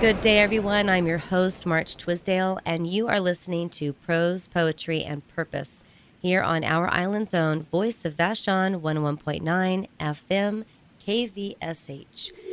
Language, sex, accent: English, female, American